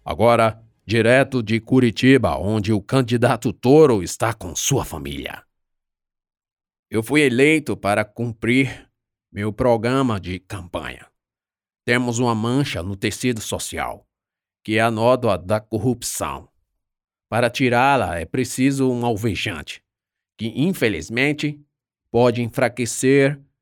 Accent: Brazilian